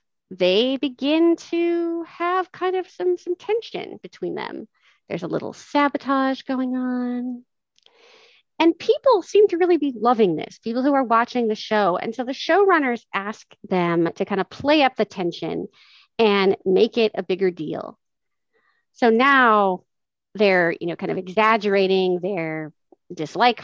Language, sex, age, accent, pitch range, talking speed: English, female, 40-59, American, 185-290 Hz, 150 wpm